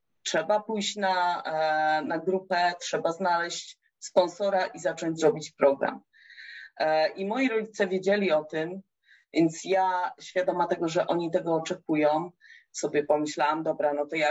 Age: 30-49